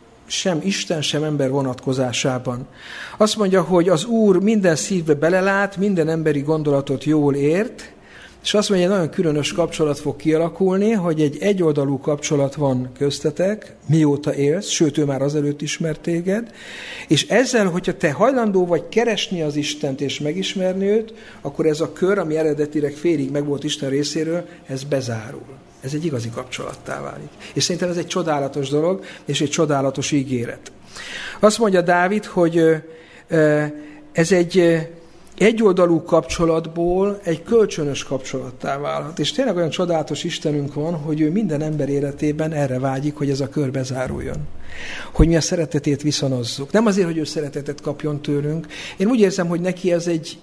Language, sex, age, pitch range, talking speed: Hungarian, male, 60-79, 145-180 Hz, 155 wpm